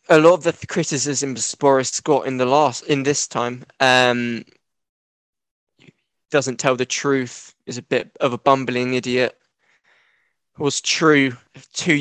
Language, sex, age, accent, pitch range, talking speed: English, male, 10-29, British, 125-145 Hz, 145 wpm